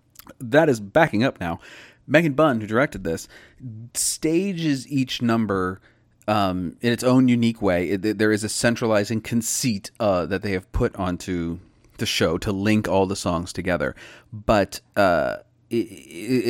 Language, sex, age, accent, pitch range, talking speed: English, male, 30-49, American, 90-115 Hz, 150 wpm